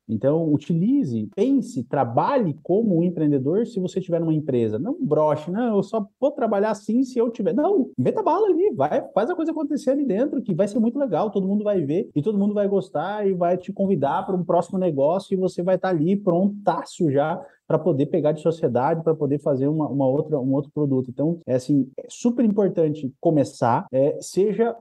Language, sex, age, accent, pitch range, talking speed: Portuguese, male, 20-39, Brazilian, 145-205 Hz, 210 wpm